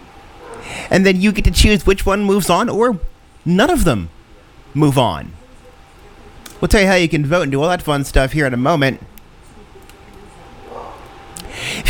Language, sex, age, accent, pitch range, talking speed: English, male, 30-49, American, 120-165 Hz, 170 wpm